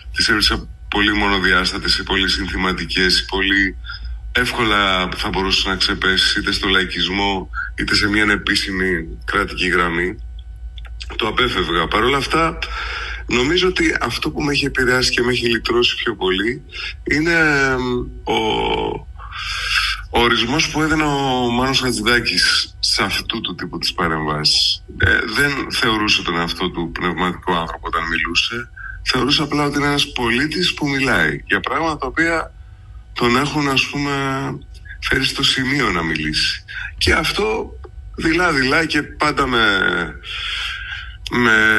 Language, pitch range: Greek, 90-130 Hz